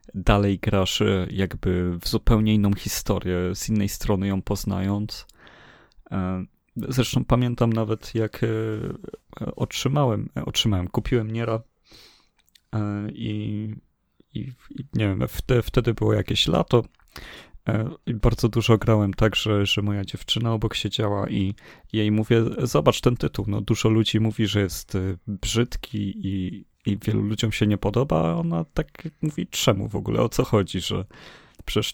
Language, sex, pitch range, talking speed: Polish, male, 95-110 Hz, 135 wpm